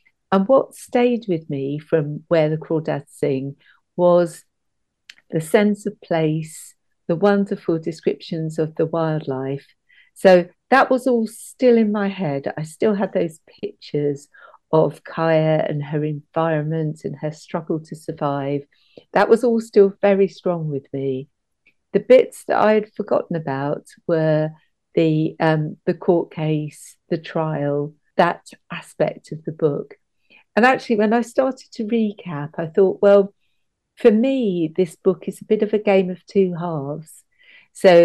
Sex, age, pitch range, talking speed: female, 50-69, 155-200 Hz, 150 wpm